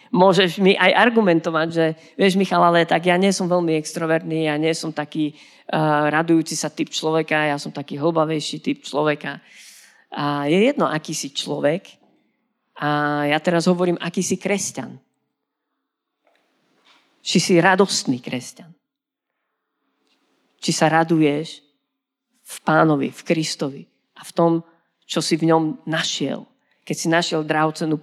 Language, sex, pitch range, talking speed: Slovak, female, 150-190 Hz, 140 wpm